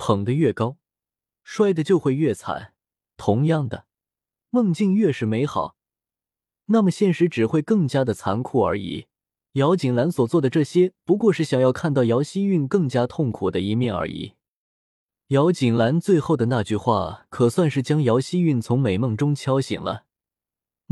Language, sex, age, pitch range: Chinese, male, 20-39, 110-170 Hz